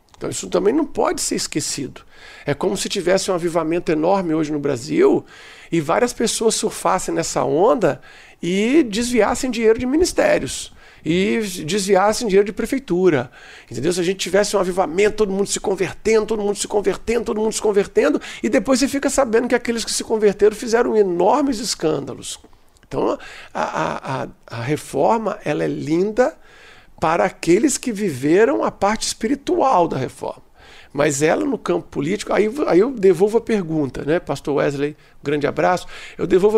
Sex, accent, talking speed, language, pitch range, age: male, Brazilian, 165 wpm, Portuguese, 180-250 Hz, 50-69